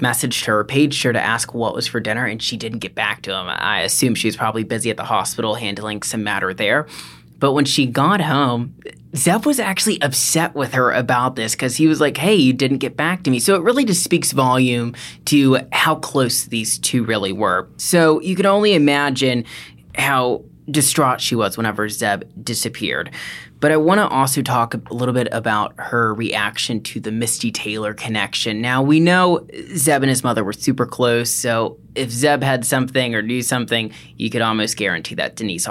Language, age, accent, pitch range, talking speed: English, 20-39, American, 115-145 Hz, 200 wpm